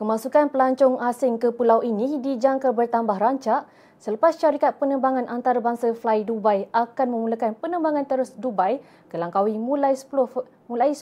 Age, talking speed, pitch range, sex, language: 20-39, 130 wpm, 225-270 Hz, female, Malay